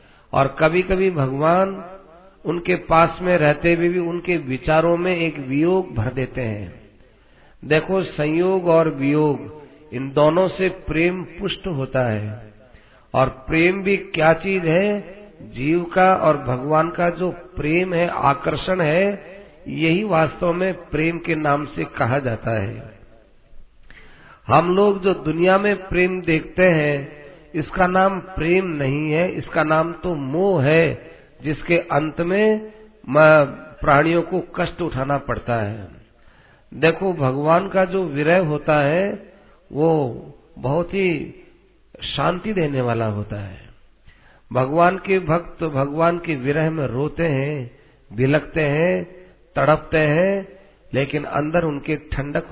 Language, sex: Hindi, male